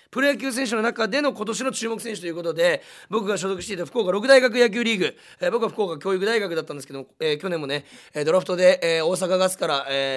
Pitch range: 180-245 Hz